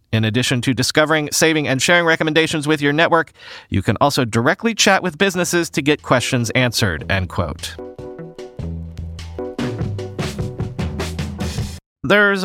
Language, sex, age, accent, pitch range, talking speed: English, male, 30-49, American, 115-170 Hz, 120 wpm